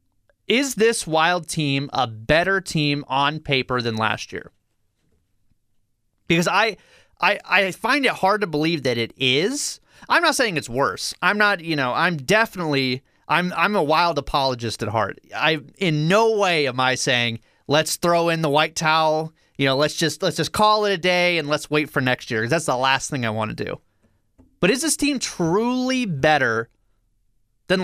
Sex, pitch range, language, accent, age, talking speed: male, 135-195 Hz, English, American, 30-49, 190 wpm